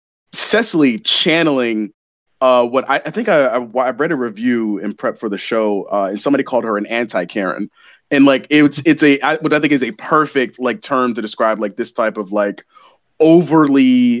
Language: English